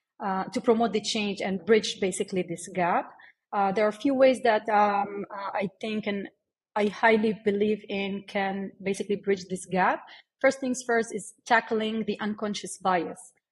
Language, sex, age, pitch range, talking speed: English, female, 30-49, 195-230 Hz, 170 wpm